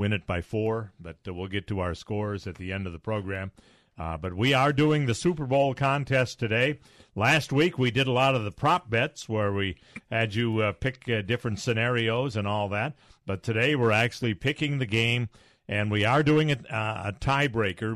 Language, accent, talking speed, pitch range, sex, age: English, American, 205 wpm, 95-125 Hz, male, 50-69